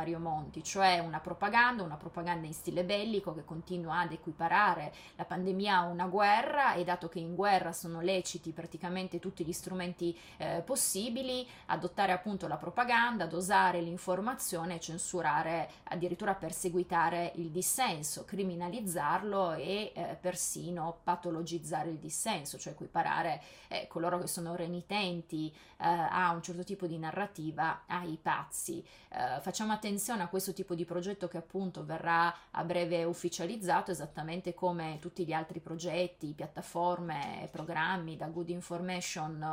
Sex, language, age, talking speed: female, Italian, 20-39, 135 wpm